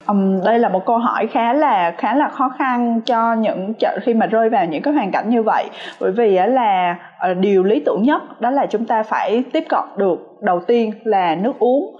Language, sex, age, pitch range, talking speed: Vietnamese, female, 20-39, 195-280 Hz, 215 wpm